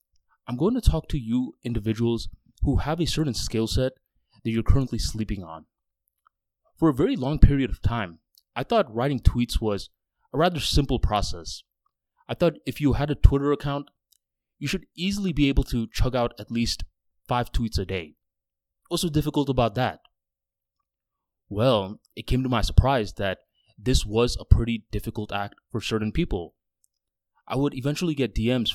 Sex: male